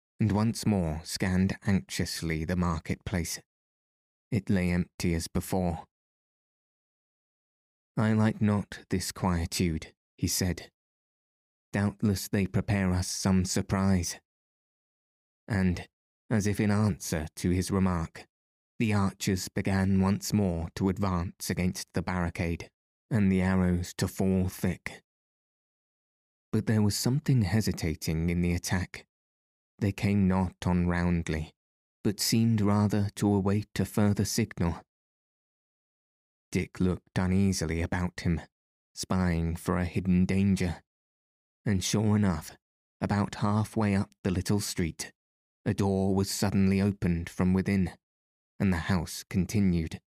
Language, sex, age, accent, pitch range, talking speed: English, male, 20-39, British, 85-100 Hz, 120 wpm